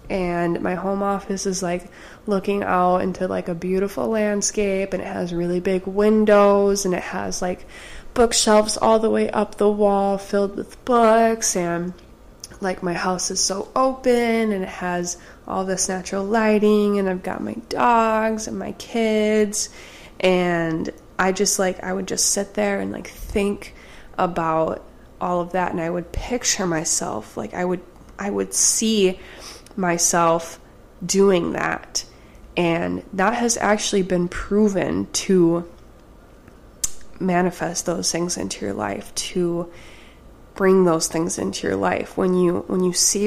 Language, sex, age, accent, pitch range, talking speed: English, female, 20-39, American, 175-210 Hz, 155 wpm